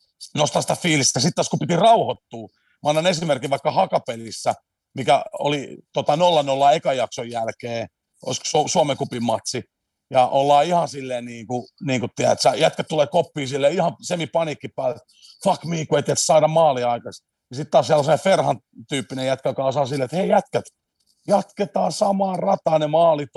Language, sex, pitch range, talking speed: Finnish, male, 130-165 Hz, 145 wpm